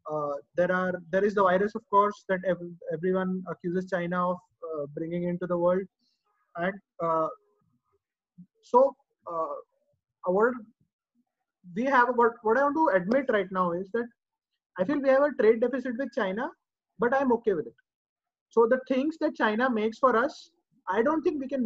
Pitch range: 190-265 Hz